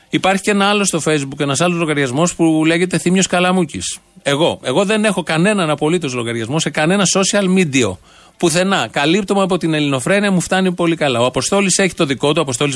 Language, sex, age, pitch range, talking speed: Greek, male, 30-49, 140-180 Hz, 195 wpm